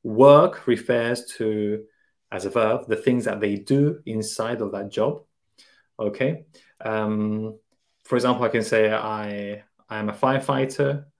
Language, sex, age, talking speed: English, male, 30-49, 145 wpm